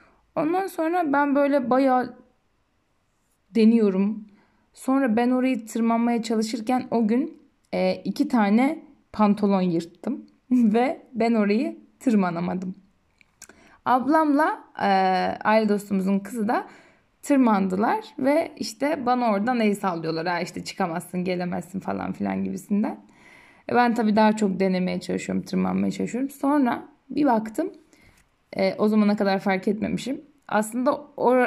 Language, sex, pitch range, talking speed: Turkish, female, 190-255 Hz, 120 wpm